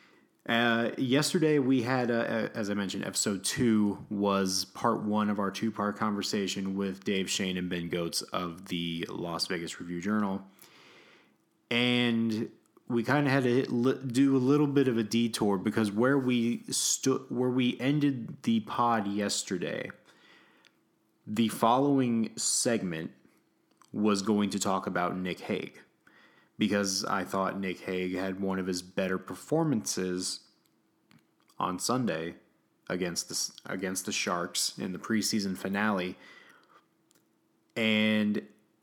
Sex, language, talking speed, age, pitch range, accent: male, English, 135 wpm, 30-49, 95-120 Hz, American